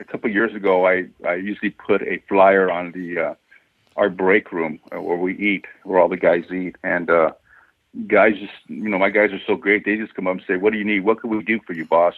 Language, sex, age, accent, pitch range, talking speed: English, male, 60-79, American, 95-110 Hz, 260 wpm